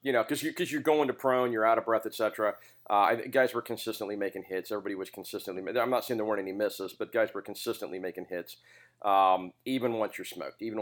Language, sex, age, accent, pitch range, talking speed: English, male, 40-59, American, 100-120 Hz, 235 wpm